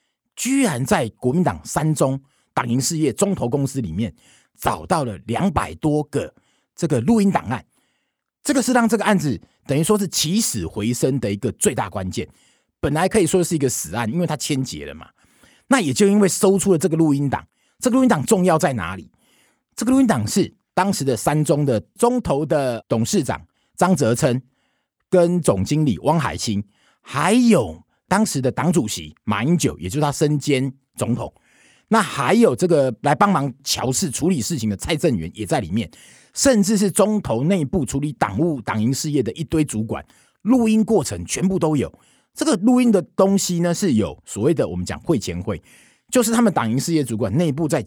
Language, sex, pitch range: Chinese, male, 125-195 Hz